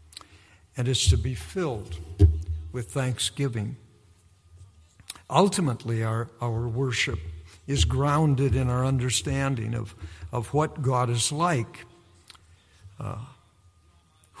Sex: male